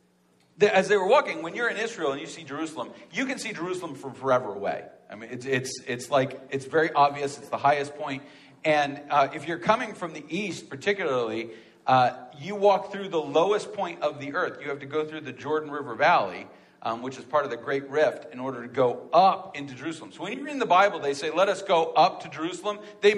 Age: 40-59